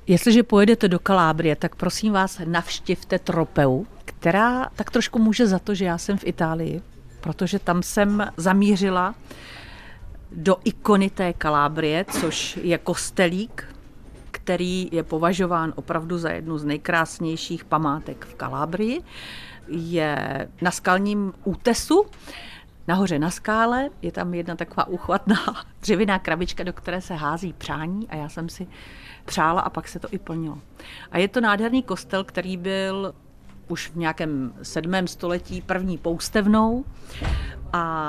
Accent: native